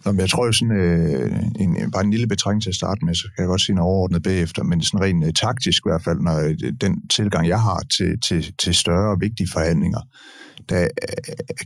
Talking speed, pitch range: 225 wpm, 85-105 Hz